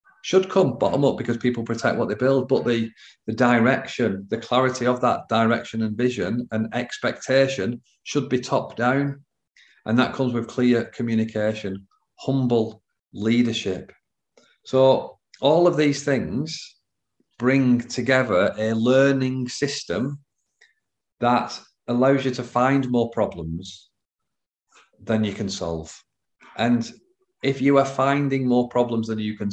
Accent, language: British, English